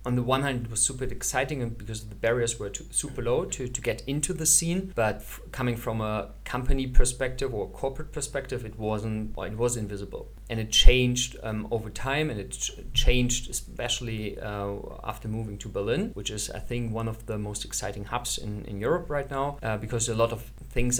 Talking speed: 210 wpm